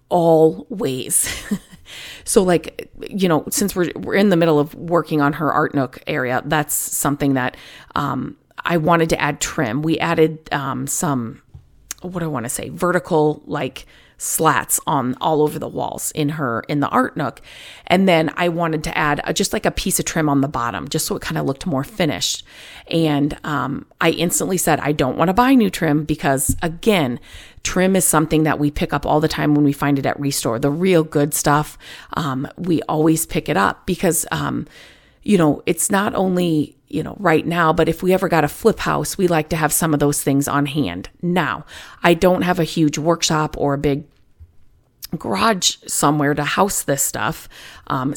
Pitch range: 145-170 Hz